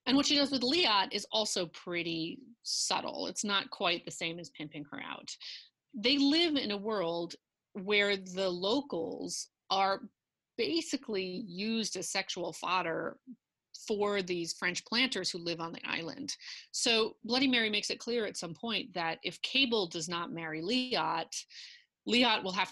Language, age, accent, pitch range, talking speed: English, 30-49, American, 170-225 Hz, 160 wpm